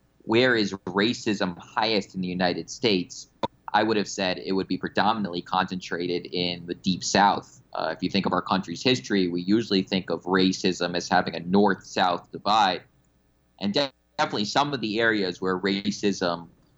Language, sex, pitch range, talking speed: English, male, 90-105 Hz, 170 wpm